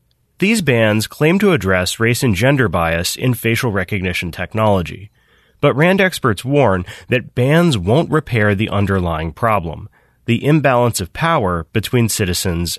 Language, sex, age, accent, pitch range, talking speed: English, male, 30-49, American, 95-140 Hz, 140 wpm